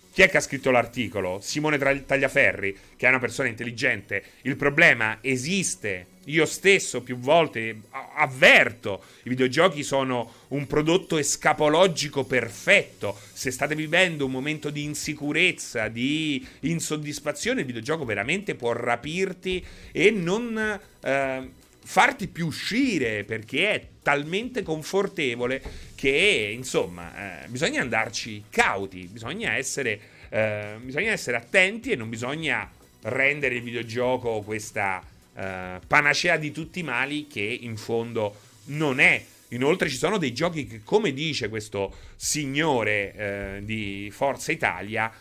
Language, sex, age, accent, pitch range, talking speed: Italian, male, 30-49, native, 110-150 Hz, 130 wpm